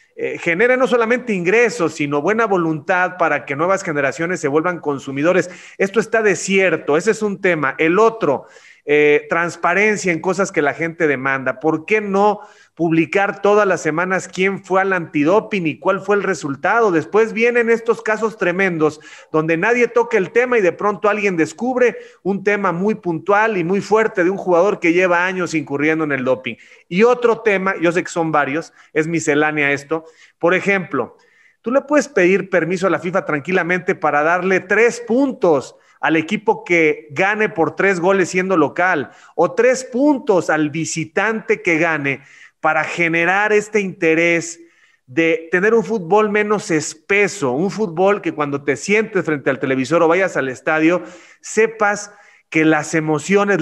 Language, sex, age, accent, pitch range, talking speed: Spanish, male, 30-49, Mexican, 160-205 Hz, 165 wpm